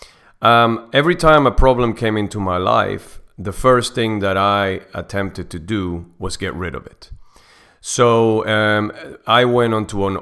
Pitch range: 90-110 Hz